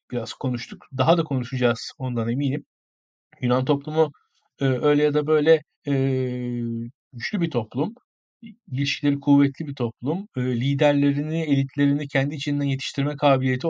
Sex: male